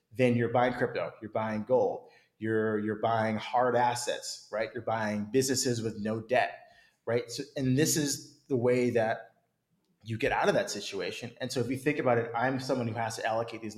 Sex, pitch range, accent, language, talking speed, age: male, 110-130 Hz, American, English, 205 wpm, 30-49